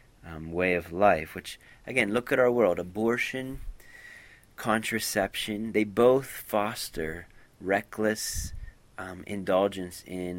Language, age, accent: English, 30-49, American